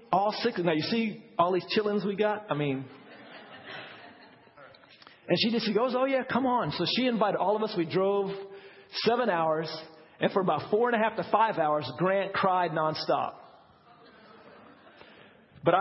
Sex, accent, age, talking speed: male, American, 50-69, 170 wpm